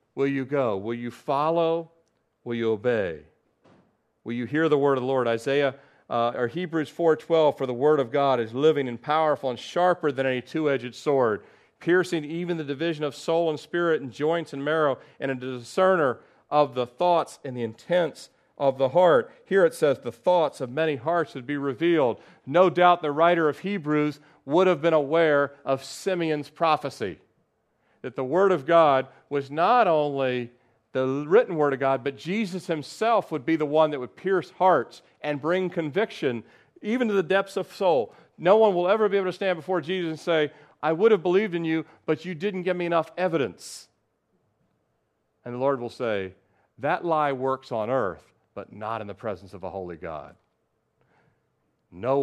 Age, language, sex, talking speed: 40-59, English, male, 185 wpm